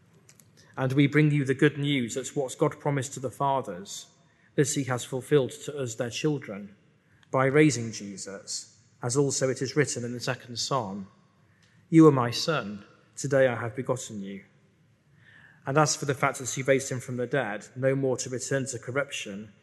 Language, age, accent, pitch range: English, 40-59, British, 120-145 Hz